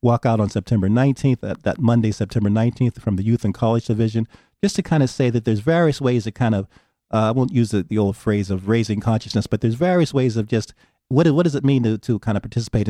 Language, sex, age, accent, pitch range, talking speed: English, male, 40-59, American, 100-120 Hz, 255 wpm